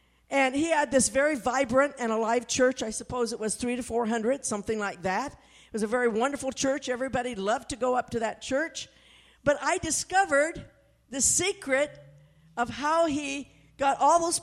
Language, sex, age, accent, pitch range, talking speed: English, female, 50-69, American, 225-295 Hz, 185 wpm